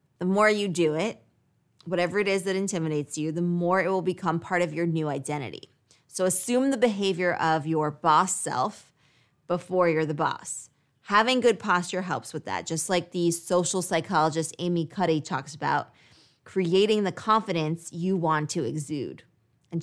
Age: 20-39